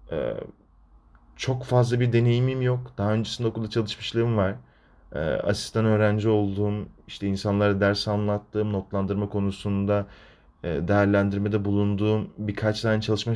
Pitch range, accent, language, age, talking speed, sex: 85-145 Hz, native, Turkish, 30-49, 110 wpm, male